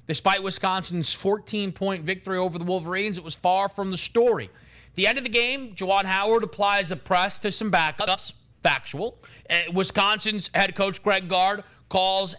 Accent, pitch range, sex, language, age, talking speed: American, 160-205 Hz, male, English, 30-49, 170 wpm